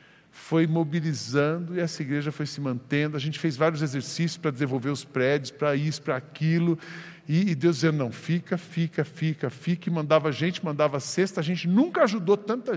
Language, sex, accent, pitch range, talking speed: Portuguese, male, Brazilian, 145-180 Hz, 190 wpm